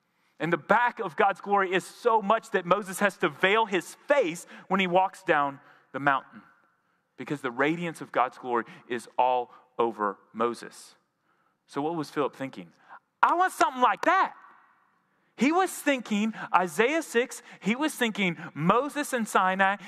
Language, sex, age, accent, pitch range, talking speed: English, male, 30-49, American, 145-225 Hz, 160 wpm